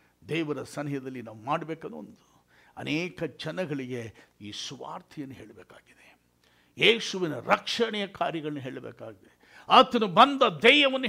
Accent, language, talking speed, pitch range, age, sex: native, Kannada, 90 wpm, 115-195 Hz, 60-79, male